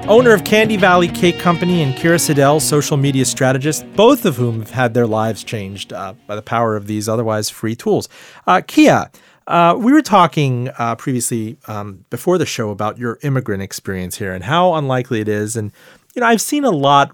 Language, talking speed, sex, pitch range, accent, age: English, 205 wpm, male, 115-150 Hz, American, 30-49